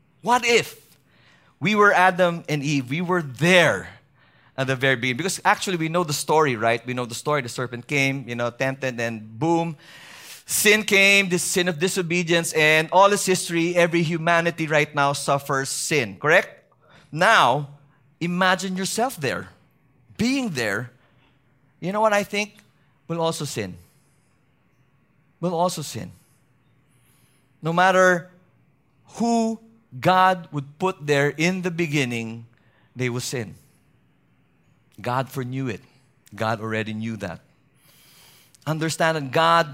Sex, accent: male, Filipino